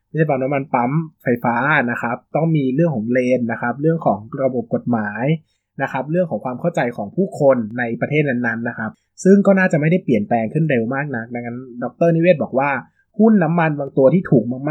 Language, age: Thai, 20-39